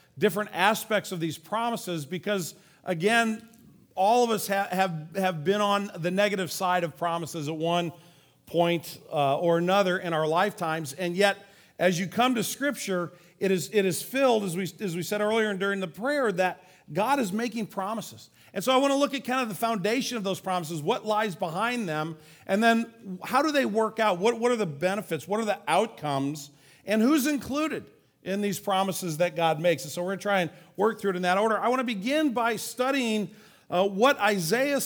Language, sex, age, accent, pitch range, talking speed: English, male, 40-59, American, 175-230 Hz, 210 wpm